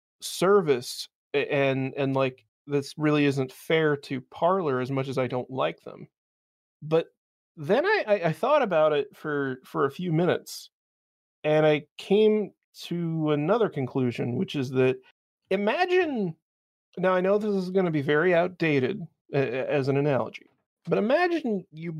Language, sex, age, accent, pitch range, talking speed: English, male, 30-49, American, 130-175 Hz, 150 wpm